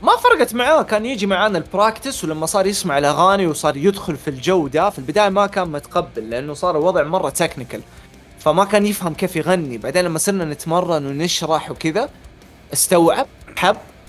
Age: 30-49